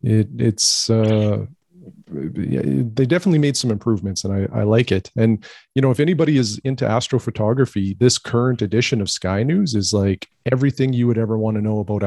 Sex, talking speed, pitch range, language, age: male, 185 wpm, 105-125 Hz, English, 40-59